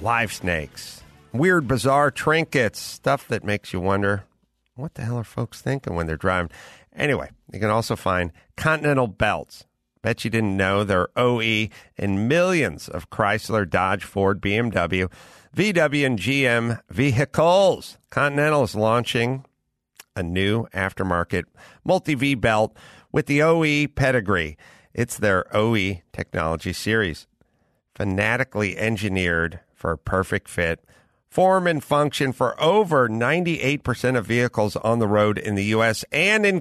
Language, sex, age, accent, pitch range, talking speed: English, male, 50-69, American, 95-135 Hz, 135 wpm